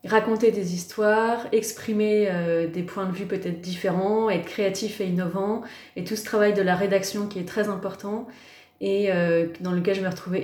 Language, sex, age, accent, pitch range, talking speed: French, female, 20-39, French, 180-215 Hz, 190 wpm